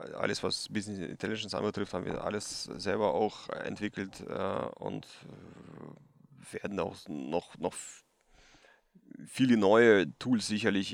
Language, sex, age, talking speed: German, male, 30-49, 120 wpm